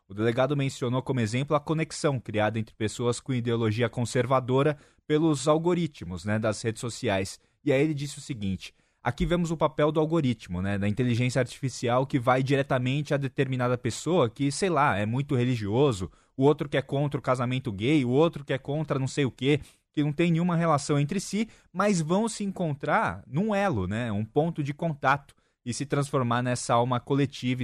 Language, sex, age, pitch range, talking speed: Portuguese, male, 20-39, 120-155 Hz, 190 wpm